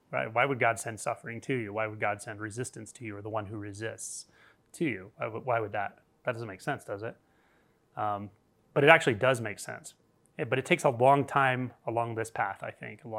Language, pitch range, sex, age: English, 115-140 Hz, male, 30-49